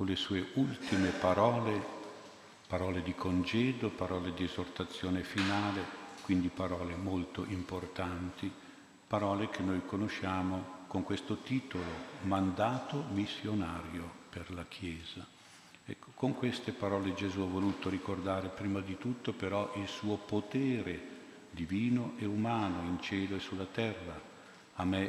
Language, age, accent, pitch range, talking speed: Italian, 50-69, native, 90-100 Hz, 125 wpm